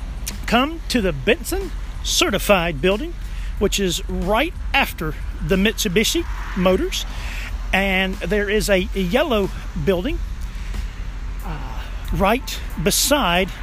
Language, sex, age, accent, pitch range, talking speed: English, male, 40-59, American, 160-225 Hz, 95 wpm